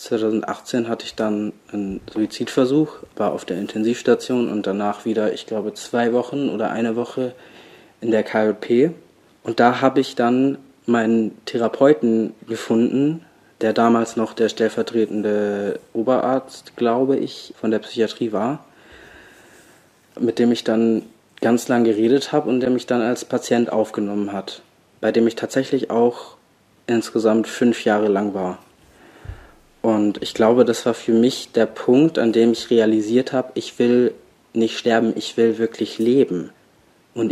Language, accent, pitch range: German, German, 110-125 Hz